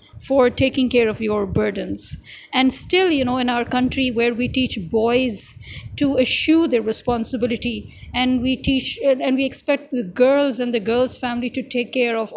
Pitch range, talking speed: 225-260 Hz, 180 wpm